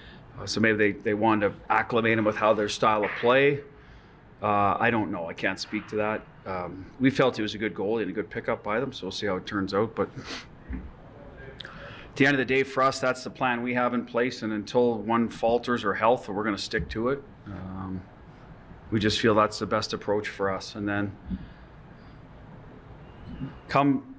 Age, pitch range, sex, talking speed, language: 40-59, 105-130 Hz, male, 215 wpm, English